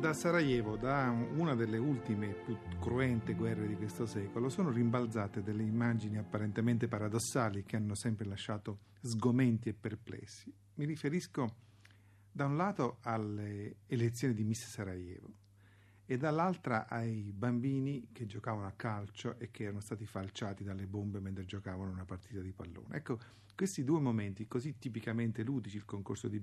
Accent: native